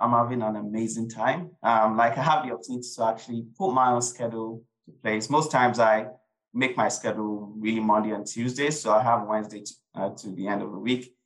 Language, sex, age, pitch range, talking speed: English, male, 20-39, 105-120 Hz, 220 wpm